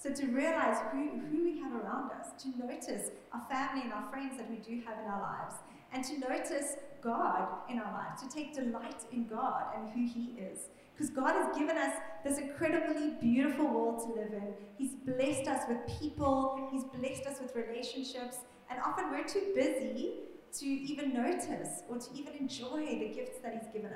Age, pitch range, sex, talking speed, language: 30-49, 230-285 Hz, female, 195 wpm, English